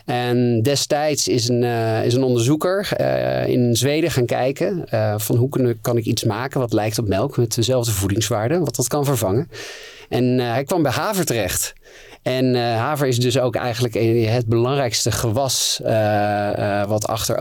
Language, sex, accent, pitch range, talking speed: Dutch, male, Dutch, 105-130 Hz, 185 wpm